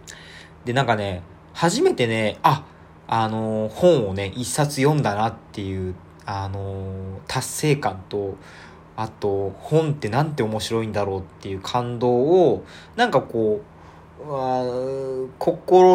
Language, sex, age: Japanese, male, 20-39